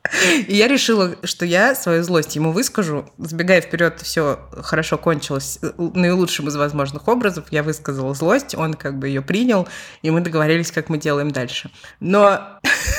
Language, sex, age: Russian, female, 20-39